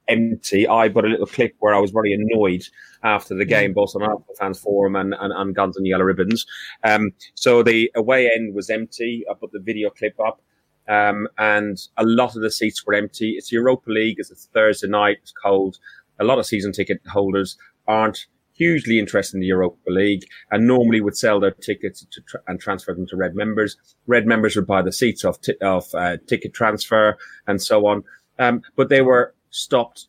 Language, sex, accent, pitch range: English, male, British, 100-120 Hz